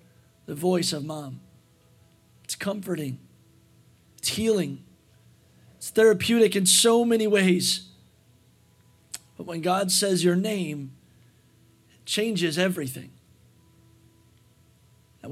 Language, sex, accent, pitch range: English, male, American, 130-190 Hz